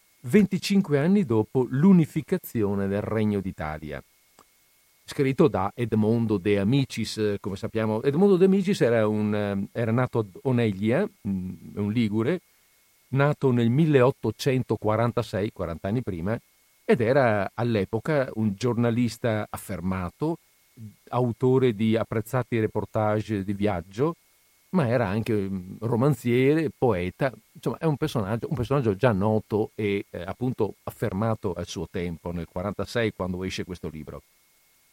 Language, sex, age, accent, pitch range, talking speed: Italian, male, 50-69, native, 105-135 Hz, 120 wpm